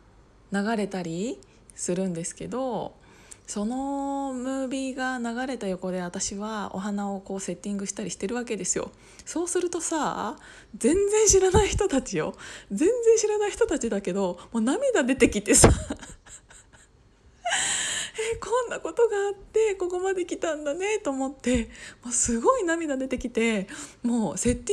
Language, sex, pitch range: Japanese, female, 190-280 Hz